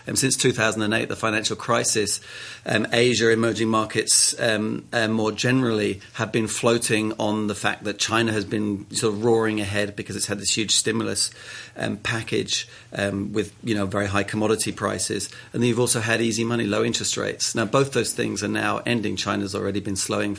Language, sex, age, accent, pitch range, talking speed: English, male, 40-59, British, 105-120 Hz, 190 wpm